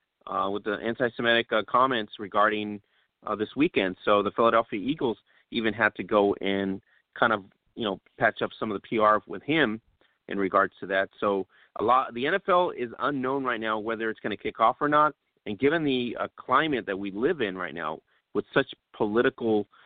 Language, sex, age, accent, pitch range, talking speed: English, male, 30-49, American, 105-135 Hz, 200 wpm